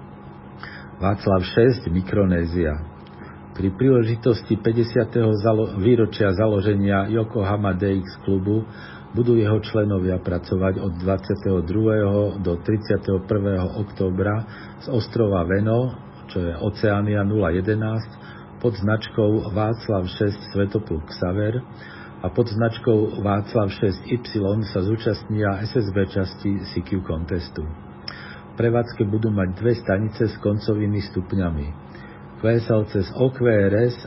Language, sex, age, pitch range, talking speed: Slovak, male, 50-69, 95-110 Hz, 100 wpm